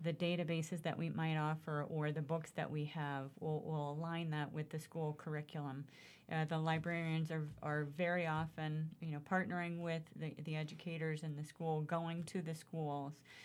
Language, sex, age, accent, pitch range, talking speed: English, female, 40-59, American, 150-165 Hz, 185 wpm